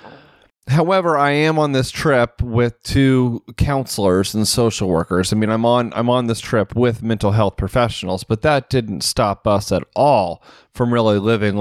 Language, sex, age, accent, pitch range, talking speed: English, male, 30-49, American, 110-140 Hz, 175 wpm